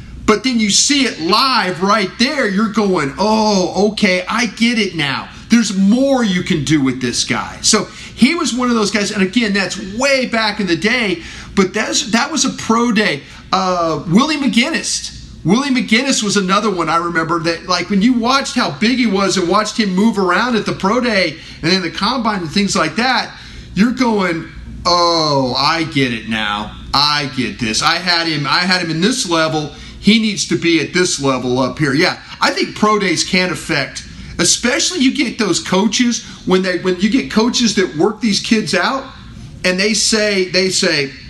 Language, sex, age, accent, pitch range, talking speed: English, male, 40-59, American, 170-225 Hz, 195 wpm